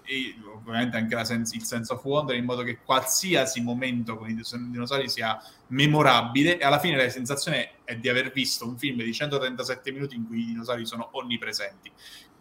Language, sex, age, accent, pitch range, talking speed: Italian, male, 20-39, native, 115-140 Hz, 195 wpm